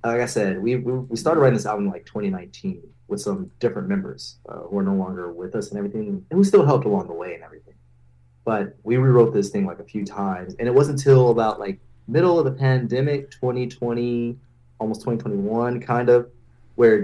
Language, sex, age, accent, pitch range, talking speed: English, male, 30-49, American, 95-135 Hz, 210 wpm